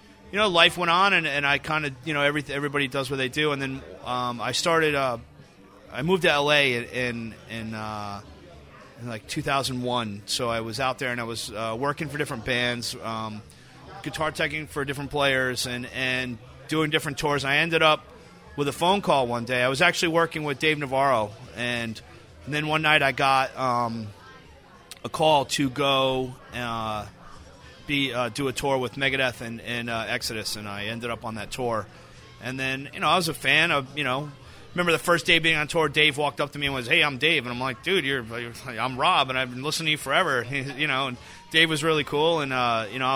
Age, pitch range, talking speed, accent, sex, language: 30-49, 120-150 Hz, 220 wpm, American, male, English